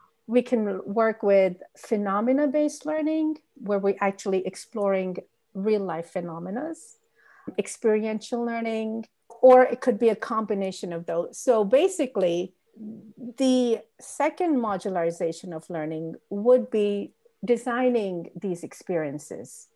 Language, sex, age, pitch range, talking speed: English, female, 50-69, 190-265 Hz, 105 wpm